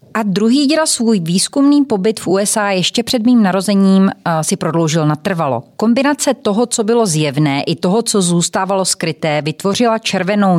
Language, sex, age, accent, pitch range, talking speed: Czech, female, 30-49, native, 160-205 Hz, 160 wpm